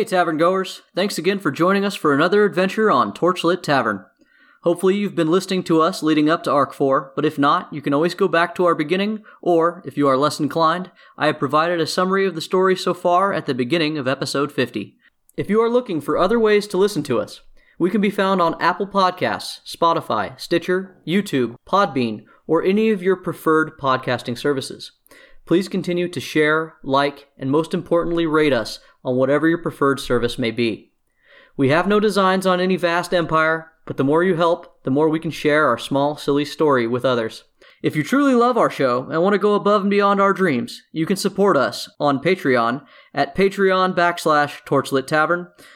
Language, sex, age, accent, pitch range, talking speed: English, male, 20-39, American, 145-190 Hz, 200 wpm